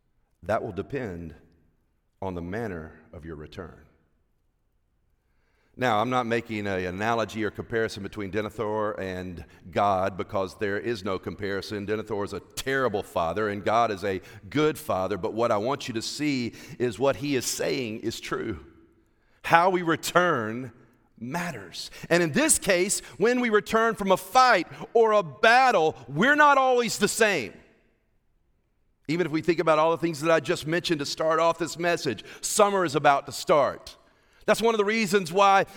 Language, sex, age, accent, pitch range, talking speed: English, male, 40-59, American, 125-210 Hz, 170 wpm